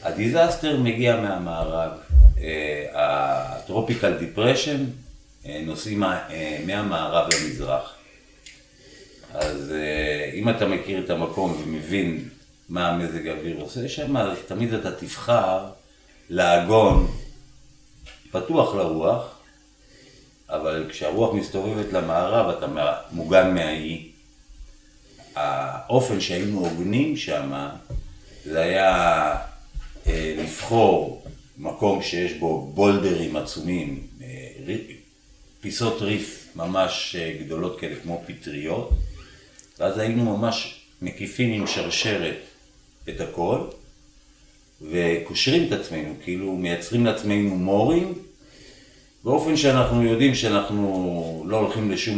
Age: 50-69